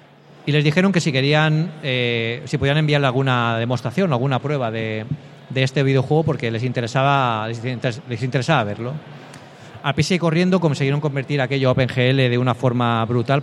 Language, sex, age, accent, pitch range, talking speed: Spanish, male, 30-49, Spanish, 125-155 Hz, 165 wpm